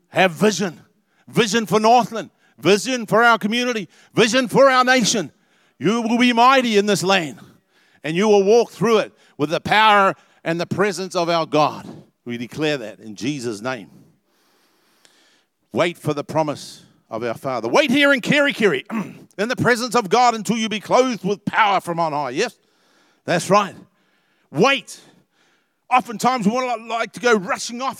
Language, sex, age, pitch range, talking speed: English, male, 50-69, 170-230 Hz, 170 wpm